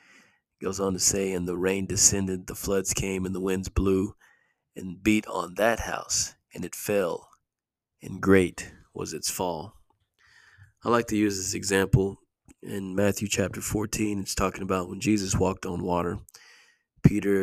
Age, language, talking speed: 40-59, English, 160 wpm